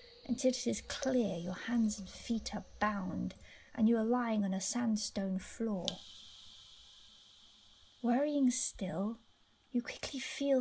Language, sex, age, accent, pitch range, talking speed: English, female, 30-49, British, 210-270 Hz, 130 wpm